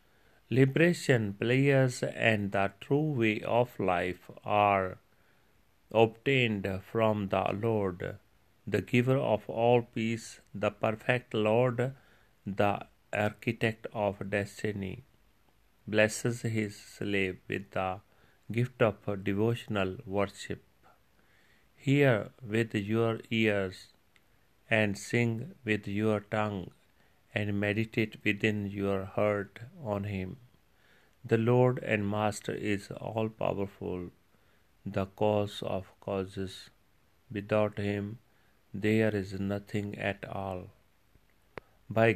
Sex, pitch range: male, 100-115 Hz